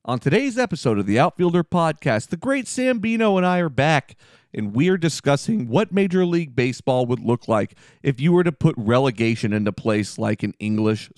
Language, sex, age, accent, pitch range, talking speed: English, male, 40-59, American, 125-155 Hz, 200 wpm